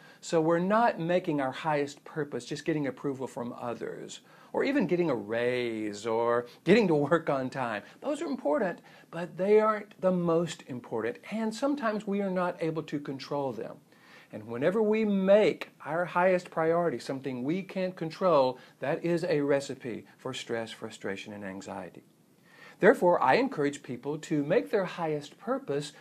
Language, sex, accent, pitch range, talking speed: English, male, American, 135-180 Hz, 160 wpm